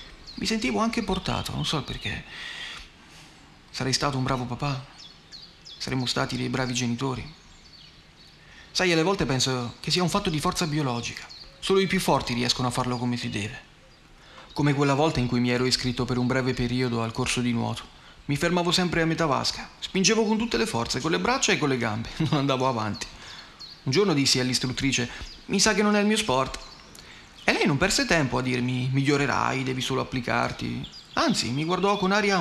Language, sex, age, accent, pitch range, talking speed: Italian, male, 30-49, native, 125-165 Hz, 190 wpm